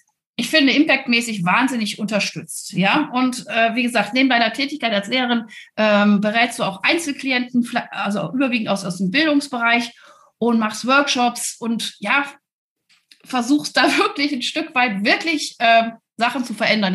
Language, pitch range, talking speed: German, 225-290 Hz, 150 wpm